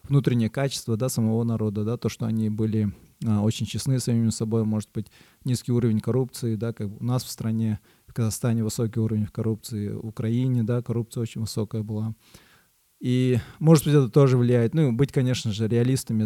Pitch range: 110-125 Hz